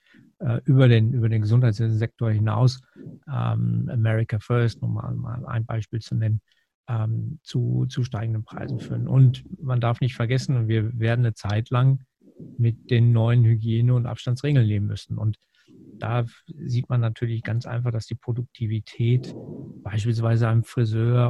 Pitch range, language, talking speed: 115-130 Hz, German, 145 wpm